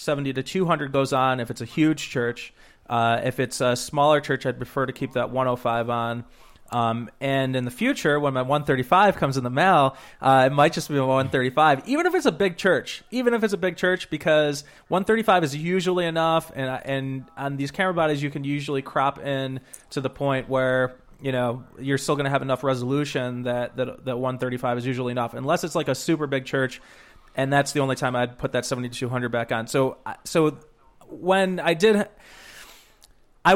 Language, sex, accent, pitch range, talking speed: English, male, American, 130-155 Hz, 215 wpm